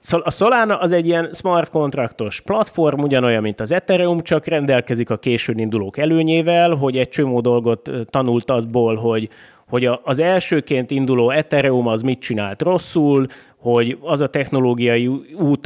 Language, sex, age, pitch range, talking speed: Hungarian, male, 30-49, 115-160 Hz, 150 wpm